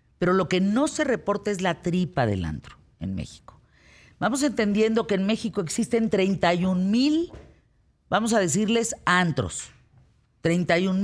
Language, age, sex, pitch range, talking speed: Spanish, 50-69, female, 130-200 Hz, 140 wpm